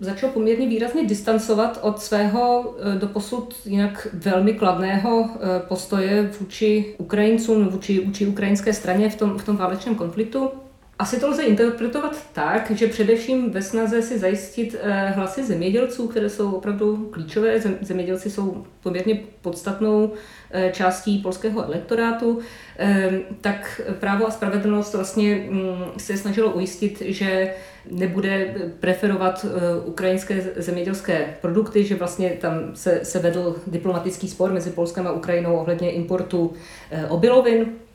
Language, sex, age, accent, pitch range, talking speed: Czech, female, 40-59, native, 180-215 Hz, 115 wpm